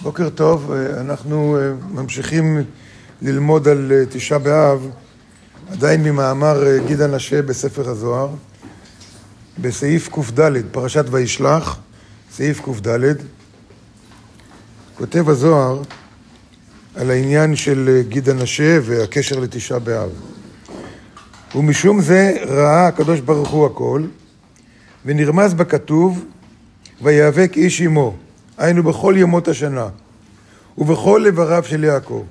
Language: Hebrew